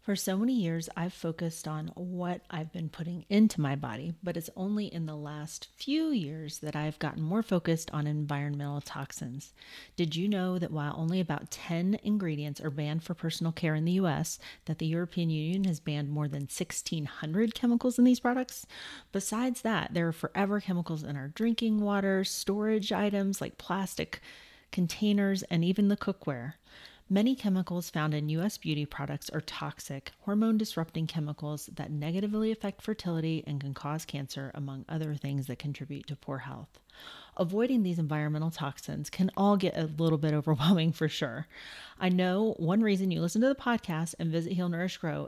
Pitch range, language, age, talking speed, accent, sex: 150-195 Hz, English, 30-49, 175 wpm, American, female